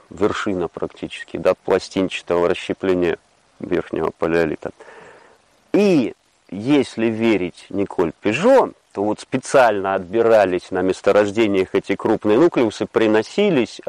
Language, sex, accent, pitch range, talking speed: Russian, male, native, 95-120 Hz, 95 wpm